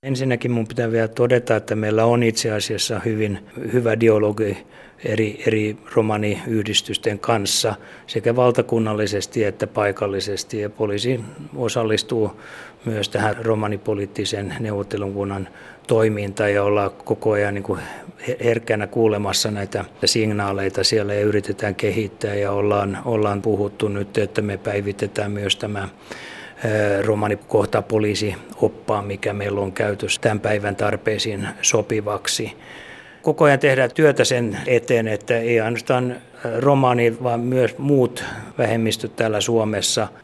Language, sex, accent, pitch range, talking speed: Finnish, male, native, 105-115 Hz, 120 wpm